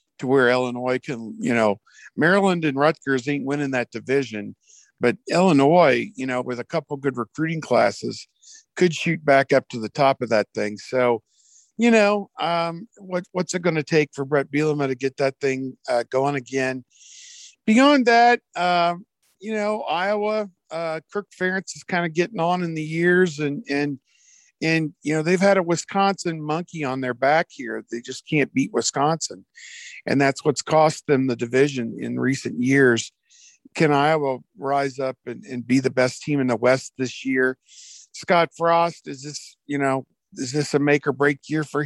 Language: English